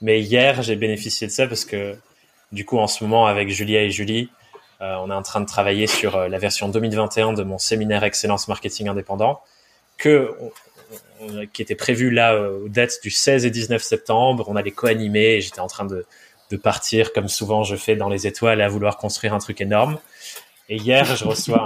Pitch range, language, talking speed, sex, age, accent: 105-125 Hz, French, 210 wpm, male, 20-39, French